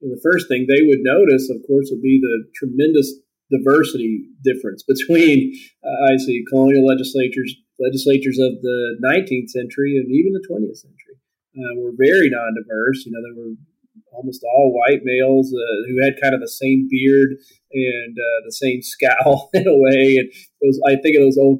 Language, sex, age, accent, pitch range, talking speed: English, male, 30-49, American, 125-150 Hz, 185 wpm